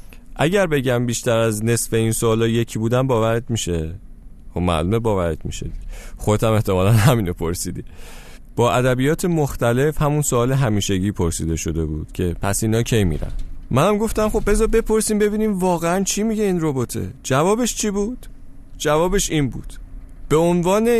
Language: Persian